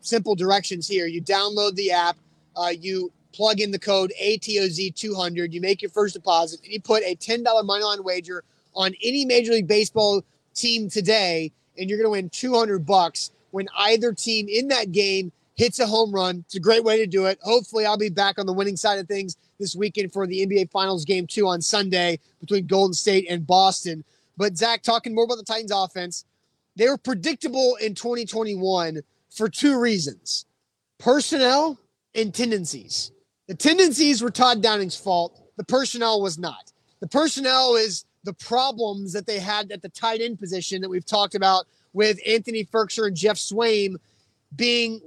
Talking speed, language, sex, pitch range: 180 wpm, English, male, 190-230 Hz